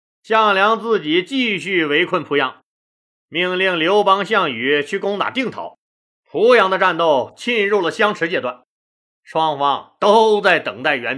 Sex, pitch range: male, 165-215 Hz